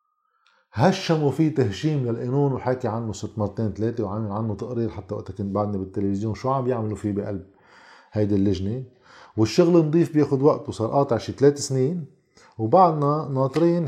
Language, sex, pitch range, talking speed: Arabic, male, 120-155 Hz, 145 wpm